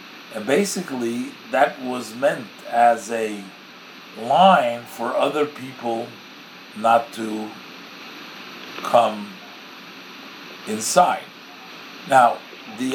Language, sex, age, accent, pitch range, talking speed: English, male, 50-69, American, 115-145 Hz, 80 wpm